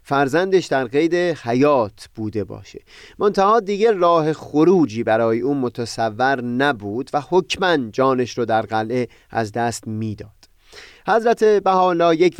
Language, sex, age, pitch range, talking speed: Persian, male, 30-49, 115-180 Hz, 130 wpm